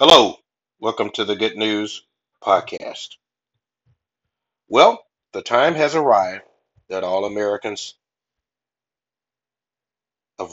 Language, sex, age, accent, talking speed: English, male, 60-79, American, 90 wpm